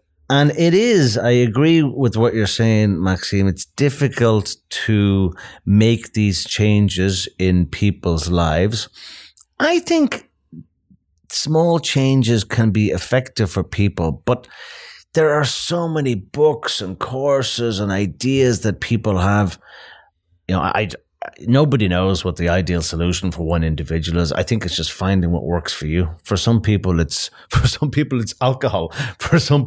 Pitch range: 95-130 Hz